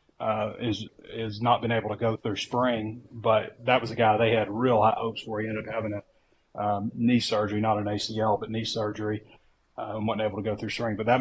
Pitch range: 105-120 Hz